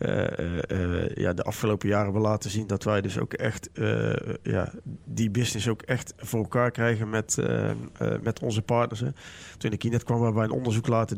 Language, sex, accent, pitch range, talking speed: Dutch, male, Dutch, 105-120 Hz, 195 wpm